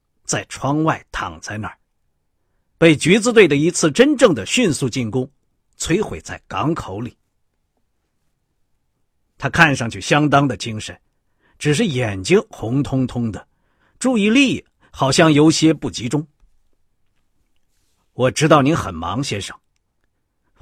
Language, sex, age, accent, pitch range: Chinese, male, 50-69, native, 100-155 Hz